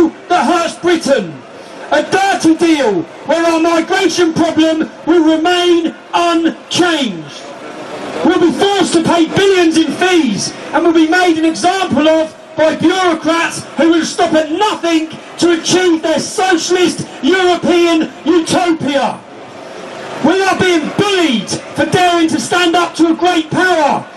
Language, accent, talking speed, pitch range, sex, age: English, British, 135 wpm, 315-360 Hz, male, 40-59